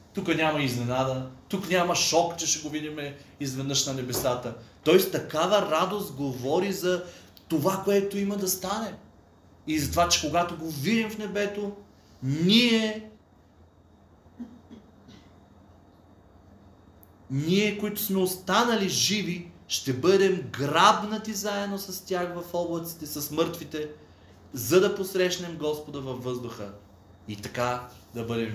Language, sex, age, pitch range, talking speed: Bulgarian, male, 30-49, 115-170 Hz, 120 wpm